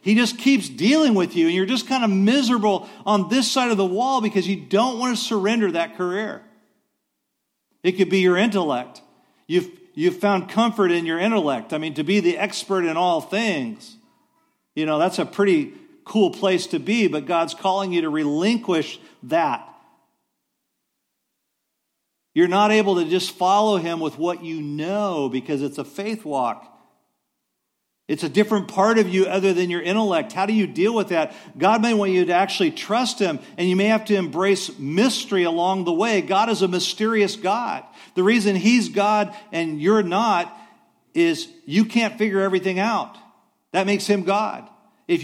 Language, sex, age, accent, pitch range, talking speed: English, male, 50-69, American, 180-235 Hz, 180 wpm